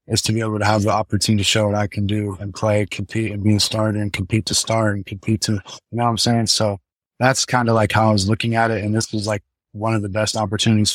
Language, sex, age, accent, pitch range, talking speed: English, male, 20-39, American, 105-115 Hz, 285 wpm